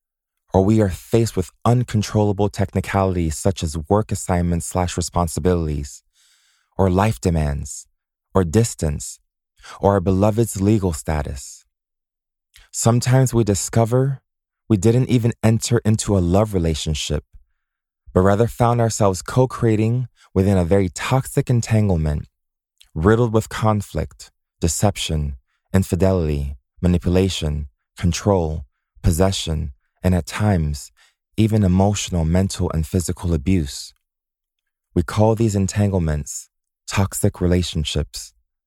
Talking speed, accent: 105 wpm, American